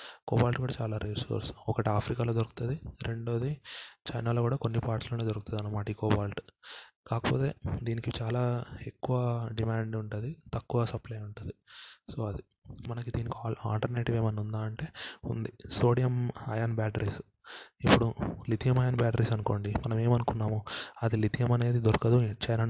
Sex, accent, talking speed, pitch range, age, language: male, native, 130 wpm, 105-120 Hz, 20-39, Telugu